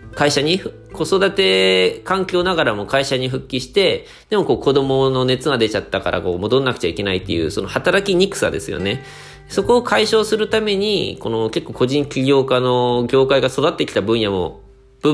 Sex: male